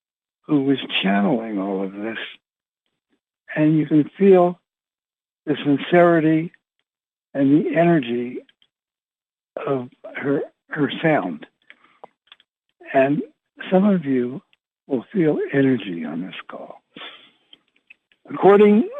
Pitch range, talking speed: 135-180 Hz, 95 wpm